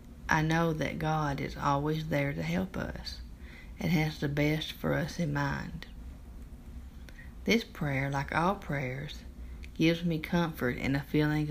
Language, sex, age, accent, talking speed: English, female, 40-59, American, 150 wpm